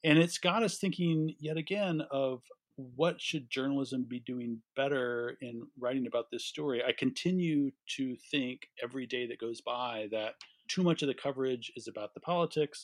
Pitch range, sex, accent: 110-140 Hz, male, American